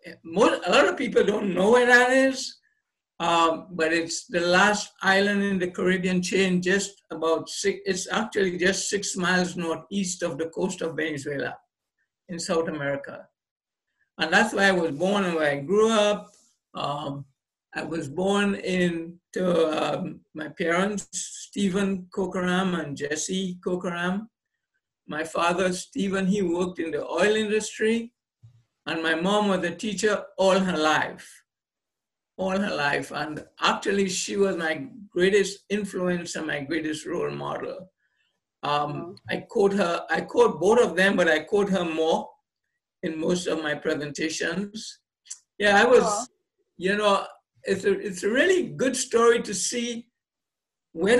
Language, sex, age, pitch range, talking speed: English, male, 60-79, 165-210 Hz, 150 wpm